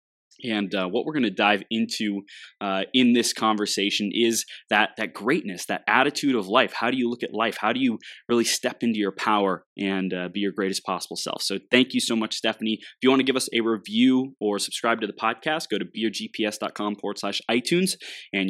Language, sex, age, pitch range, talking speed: English, male, 20-39, 95-120 Hz, 215 wpm